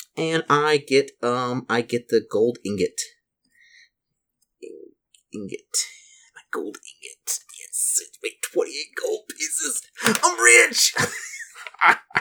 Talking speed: 110 wpm